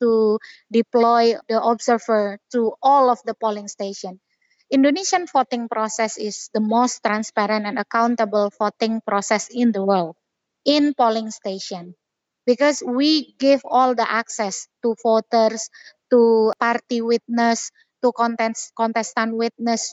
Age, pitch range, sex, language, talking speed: 20-39, 220-255 Hz, female, English, 125 wpm